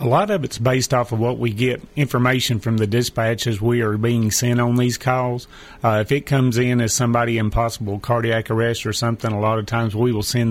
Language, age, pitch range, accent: English, 30-49, 110-125 Hz, American